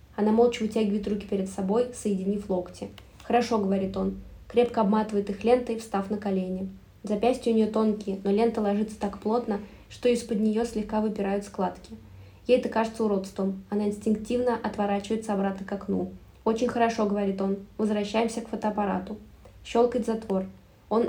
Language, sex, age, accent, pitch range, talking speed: Russian, female, 20-39, native, 200-230 Hz, 160 wpm